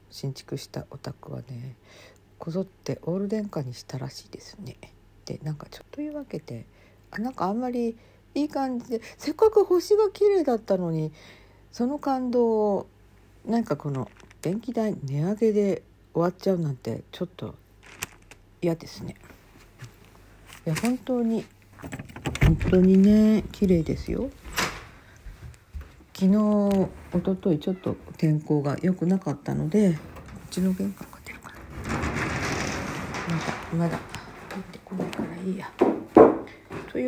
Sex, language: female, Japanese